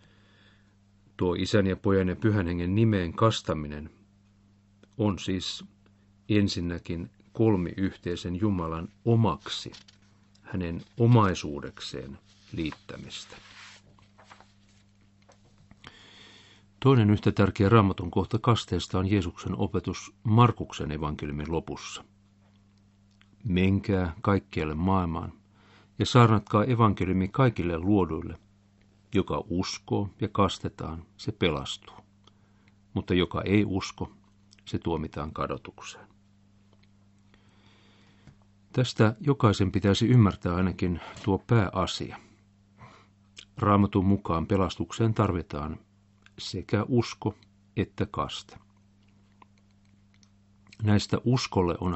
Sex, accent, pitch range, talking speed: male, native, 95-105 Hz, 80 wpm